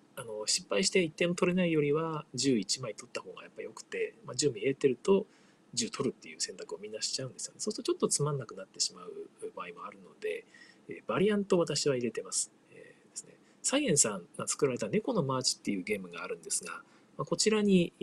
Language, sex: Japanese, male